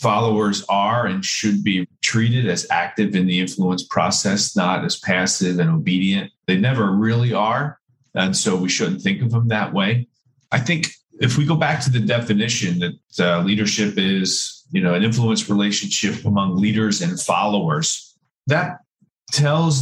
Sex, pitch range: male, 100-130 Hz